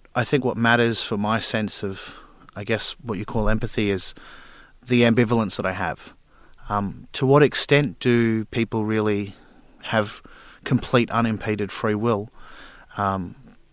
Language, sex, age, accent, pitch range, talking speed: English, male, 30-49, Australian, 105-125 Hz, 145 wpm